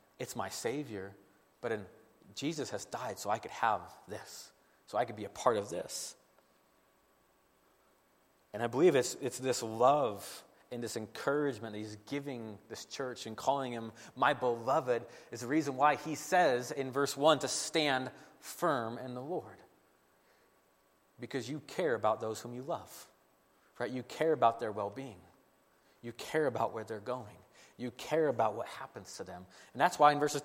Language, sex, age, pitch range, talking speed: English, male, 30-49, 115-165 Hz, 170 wpm